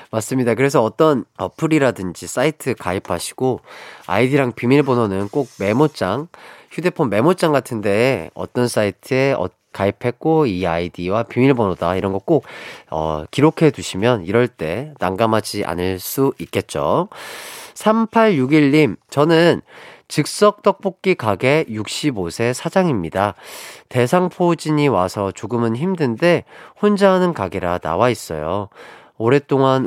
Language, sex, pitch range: Korean, male, 90-130 Hz